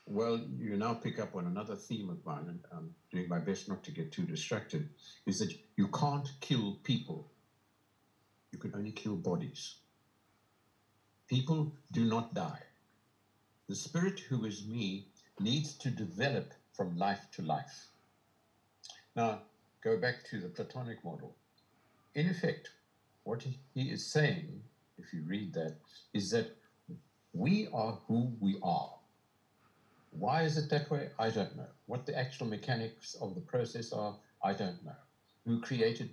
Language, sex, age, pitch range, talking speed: English, male, 60-79, 110-155 Hz, 155 wpm